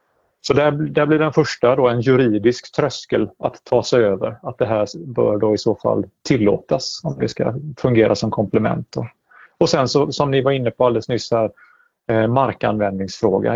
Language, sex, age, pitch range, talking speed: Swedish, male, 30-49, 110-145 Hz, 190 wpm